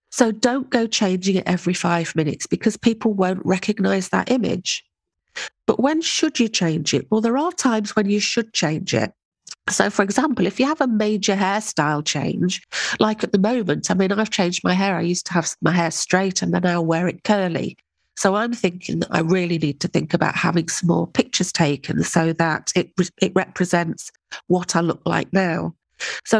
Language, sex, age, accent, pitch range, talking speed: English, female, 40-59, British, 175-220 Hz, 200 wpm